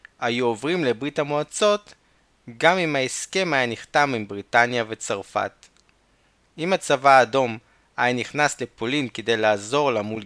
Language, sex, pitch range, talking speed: Hebrew, male, 110-150 Hz, 130 wpm